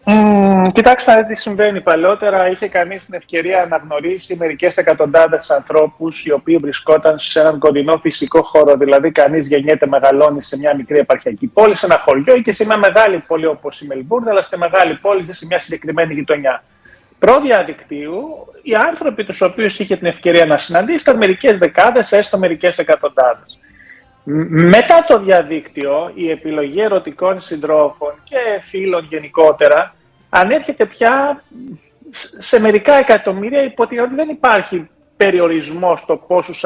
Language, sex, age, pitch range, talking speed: Greek, male, 30-49, 150-215 Hz, 145 wpm